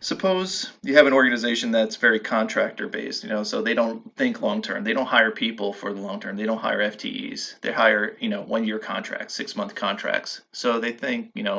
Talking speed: 200 wpm